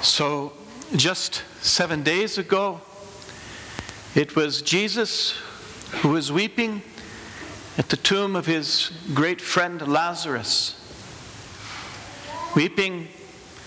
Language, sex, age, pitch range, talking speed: English, male, 60-79, 110-190 Hz, 90 wpm